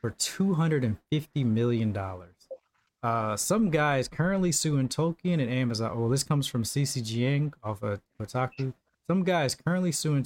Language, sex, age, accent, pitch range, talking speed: English, male, 20-39, American, 115-150 Hz, 150 wpm